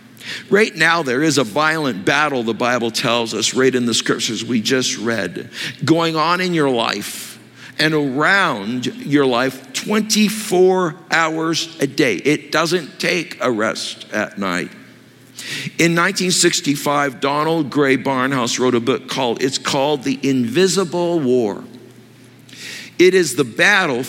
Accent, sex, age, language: American, male, 60-79, English